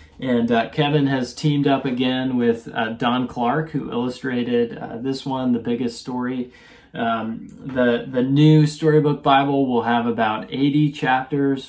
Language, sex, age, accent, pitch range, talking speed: English, male, 20-39, American, 120-145 Hz, 155 wpm